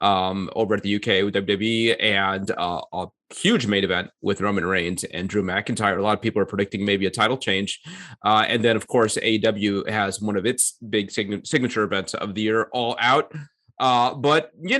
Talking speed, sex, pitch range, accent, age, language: 205 wpm, male, 100-125 Hz, American, 30-49, English